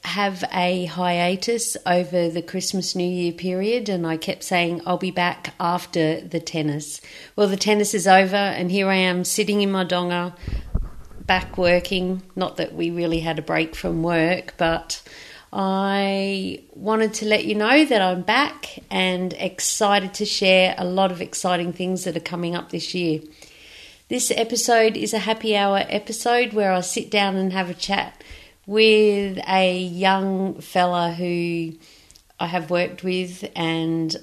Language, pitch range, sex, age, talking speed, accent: English, 165-195 Hz, female, 40-59, 165 wpm, Australian